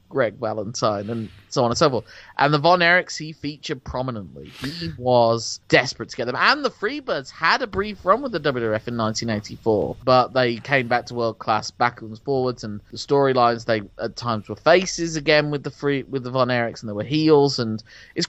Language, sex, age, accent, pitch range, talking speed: English, male, 30-49, British, 110-145 Hz, 215 wpm